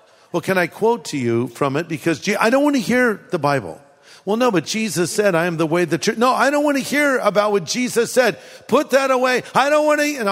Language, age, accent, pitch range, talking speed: English, 50-69, American, 180-240 Hz, 275 wpm